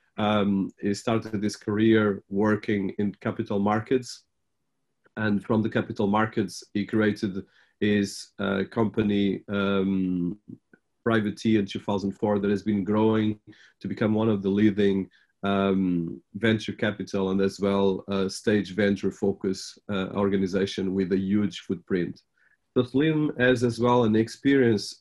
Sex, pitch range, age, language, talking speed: male, 100-115 Hz, 40-59, English, 135 wpm